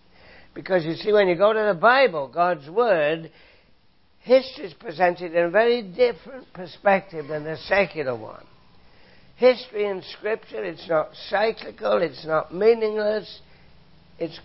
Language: English